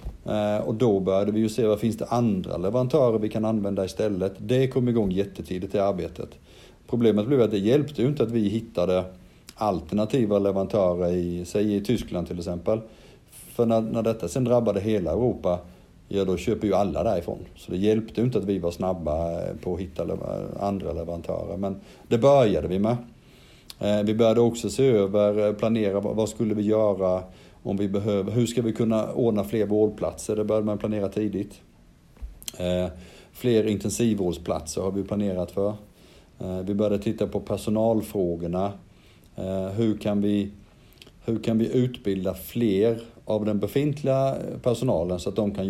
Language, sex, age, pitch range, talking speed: Swedish, male, 50-69, 95-110 Hz, 160 wpm